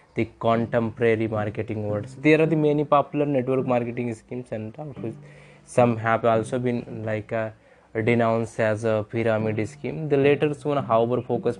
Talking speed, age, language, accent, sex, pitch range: 150 wpm, 20-39, English, Indian, male, 115-130 Hz